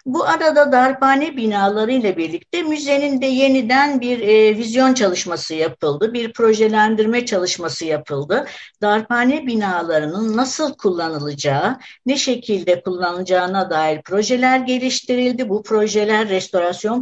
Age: 60-79